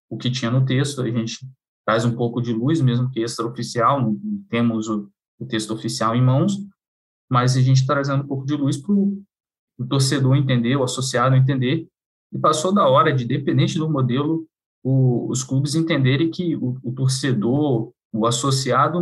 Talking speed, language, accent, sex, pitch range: 175 wpm, Portuguese, Brazilian, male, 115-140 Hz